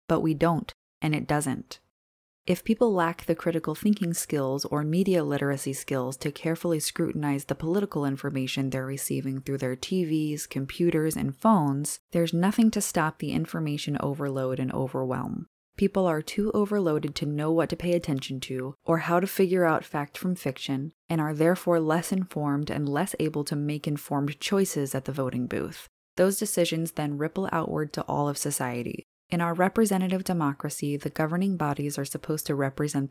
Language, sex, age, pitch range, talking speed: English, female, 20-39, 145-180 Hz, 170 wpm